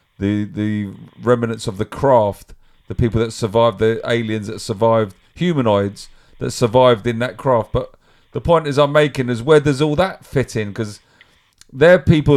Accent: British